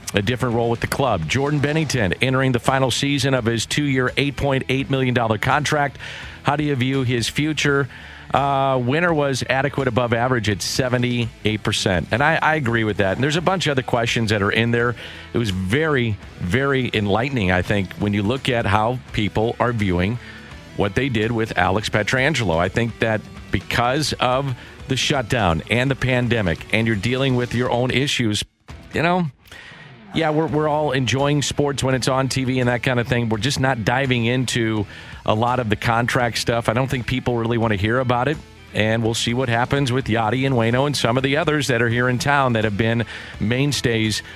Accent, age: American, 50-69